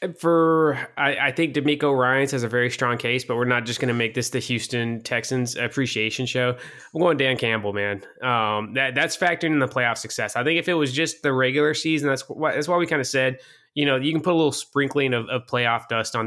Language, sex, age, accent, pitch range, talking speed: English, male, 20-39, American, 115-135 Hz, 245 wpm